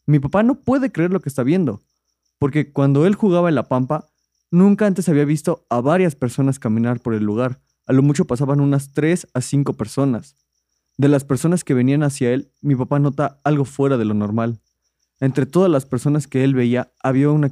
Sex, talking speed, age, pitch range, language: male, 205 wpm, 20-39, 125-160 Hz, Spanish